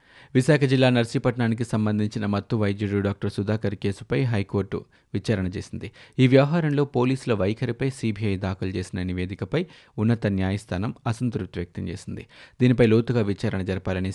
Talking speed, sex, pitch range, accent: 125 wpm, male, 100-125 Hz, native